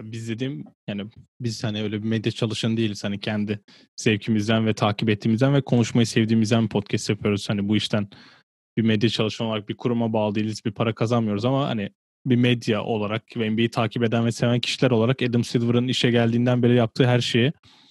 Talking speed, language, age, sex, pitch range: 185 wpm, Turkish, 20-39, male, 110-125 Hz